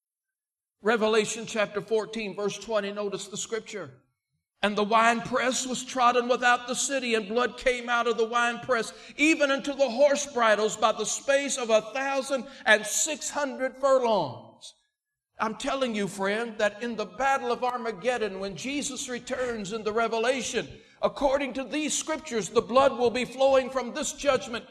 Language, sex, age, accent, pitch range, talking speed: English, male, 60-79, American, 175-260 Hz, 155 wpm